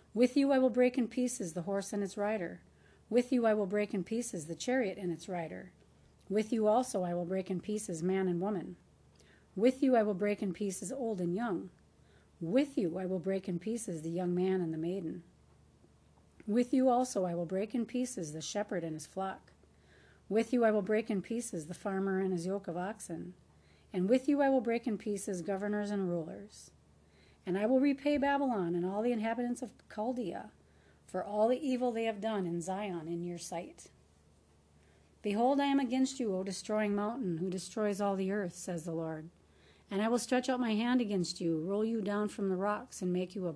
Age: 40-59